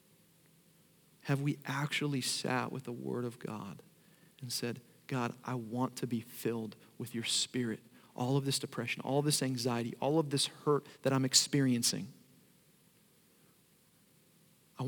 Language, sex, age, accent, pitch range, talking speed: English, male, 40-59, American, 125-165 Hz, 145 wpm